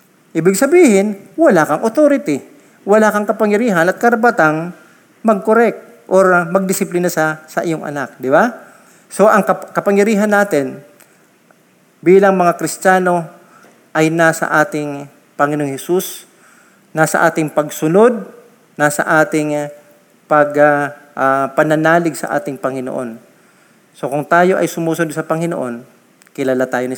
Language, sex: Filipino, male